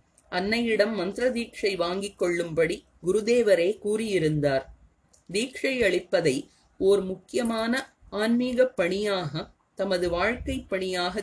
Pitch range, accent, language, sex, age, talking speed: 175-230 Hz, native, Tamil, female, 30-49, 70 wpm